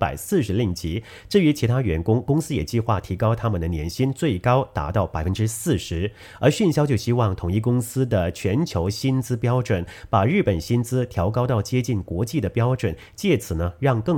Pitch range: 95-130 Hz